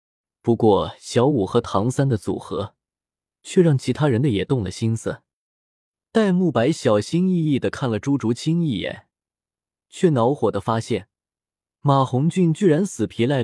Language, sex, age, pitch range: Chinese, male, 20-39, 105-155 Hz